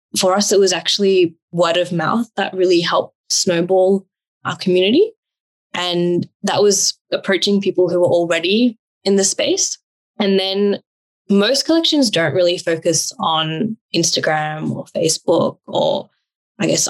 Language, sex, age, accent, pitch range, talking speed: English, female, 10-29, Australian, 165-195 Hz, 140 wpm